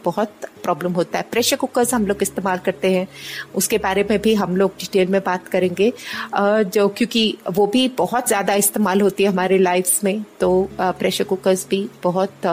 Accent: native